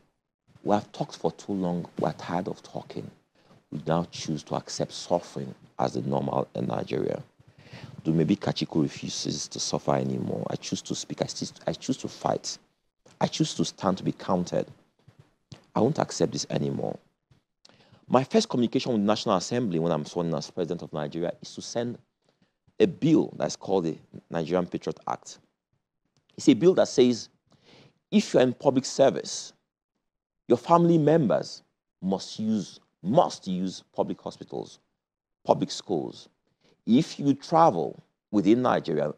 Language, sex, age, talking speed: English, male, 40-59, 155 wpm